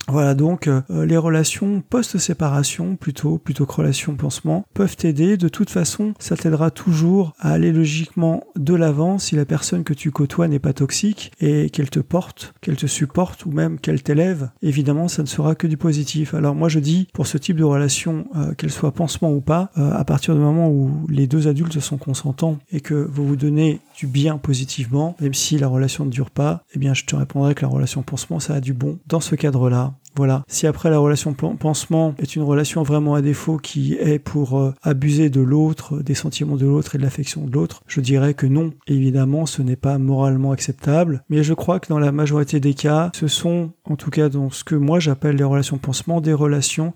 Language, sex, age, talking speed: French, male, 40-59, 215 wpm